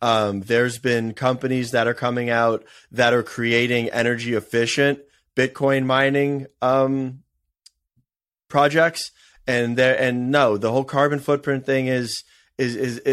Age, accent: 30-49, American